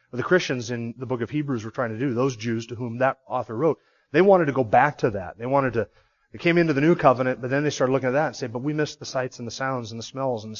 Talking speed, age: 315 wpm, 30-49